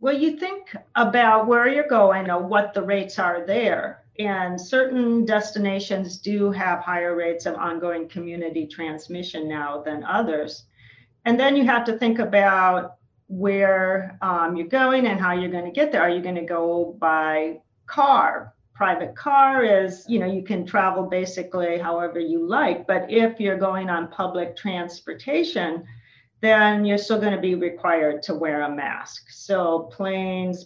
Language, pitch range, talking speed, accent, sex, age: English, 160-195 Hz, 165 wpm, American, female, 40-59